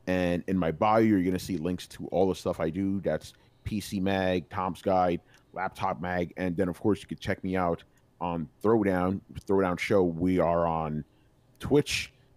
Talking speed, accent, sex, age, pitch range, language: 190 wpm, American, male, 30-49, 90-110 Hz, English